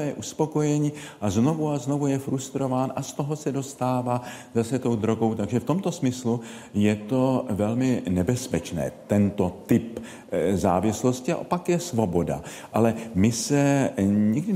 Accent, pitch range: native, 90-130 Hz